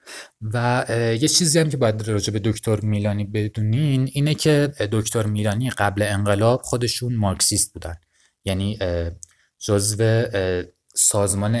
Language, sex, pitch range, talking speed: Persian, male, 90-110 Hz, 120 wpm